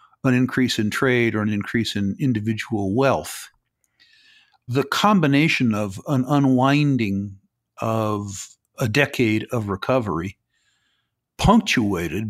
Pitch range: 110-135 Hz